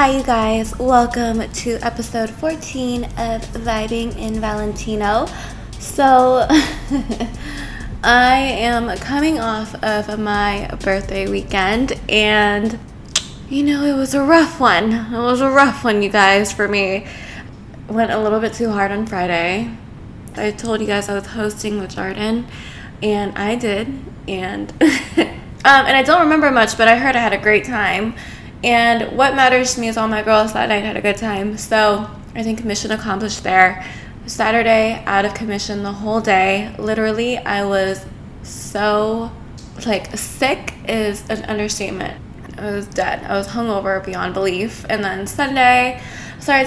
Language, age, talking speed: English, 20-39, 155 wpm